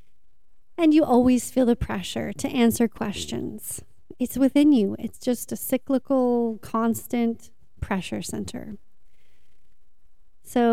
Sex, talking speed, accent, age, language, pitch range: female, 110 wpm, American, 30-49, English, 220-265 Hz